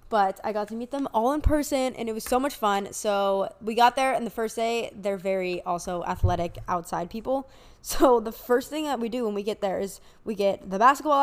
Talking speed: 240 wpm